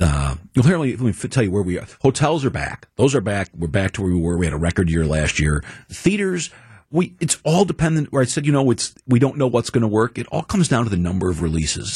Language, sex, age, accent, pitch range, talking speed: English, male, 40-59, American, 85-120 Hz, 270 wpm